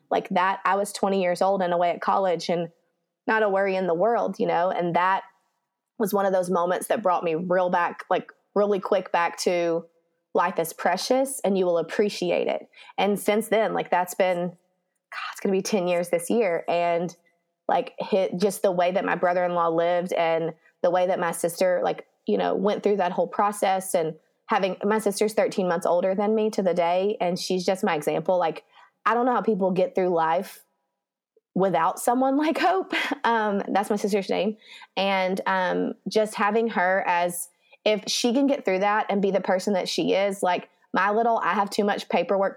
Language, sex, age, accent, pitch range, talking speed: English, female, 20-39, American, 175-215 Hz, 205 wpm